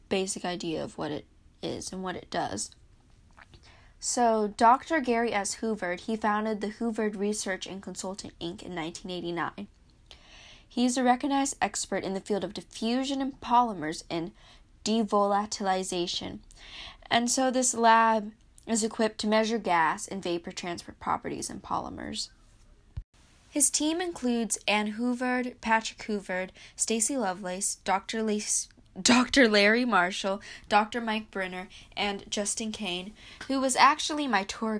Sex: female